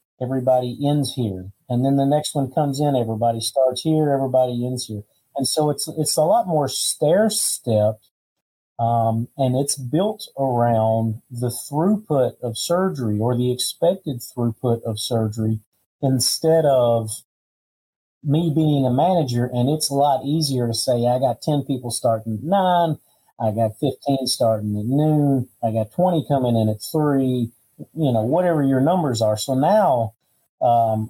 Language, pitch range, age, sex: English, 115-140 Hz, 40-59, male